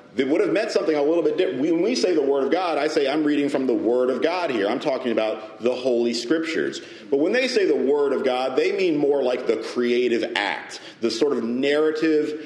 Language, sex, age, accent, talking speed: English, male, 40-59, American, 245 wpm